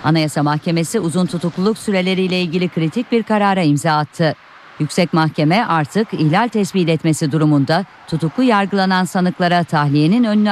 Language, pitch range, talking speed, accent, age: Turkish, 155-205 Hz, 130 wpm, native, 50-69